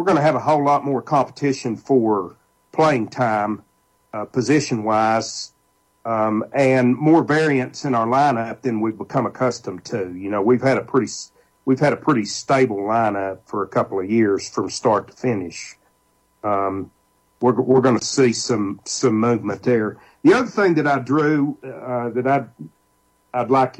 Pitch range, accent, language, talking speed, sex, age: 110-140 Hz, American, English, 175 wpm, male, 50-69